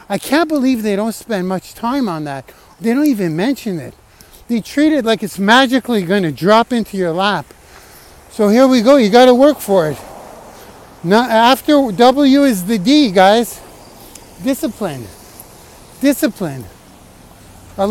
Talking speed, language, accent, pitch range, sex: 155 wpm, English, American, 175-255 Hz, male